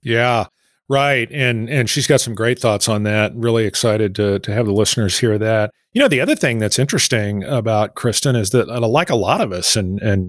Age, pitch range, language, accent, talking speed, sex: 40-59, 105-125 Hz, English, American, 220 wpm, male